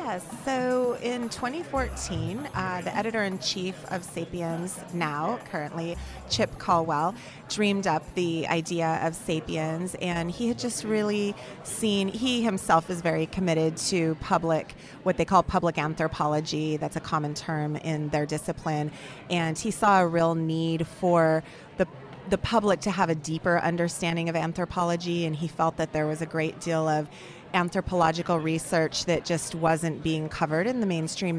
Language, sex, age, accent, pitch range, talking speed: English, female, 30-49, American, 160-185 Hz, 155 wpm